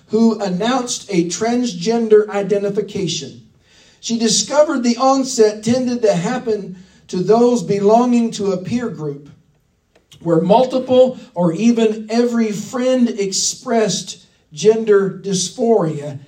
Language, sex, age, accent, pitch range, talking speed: English, male, 50-69, American, 180-230 Hz, 105 wpm